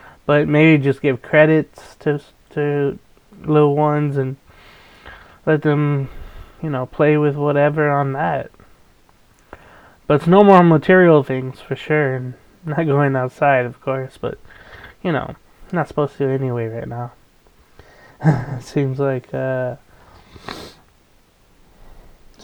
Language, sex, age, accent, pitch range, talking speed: English, male, 20-39, American, 130-160 Hz, 125 wpm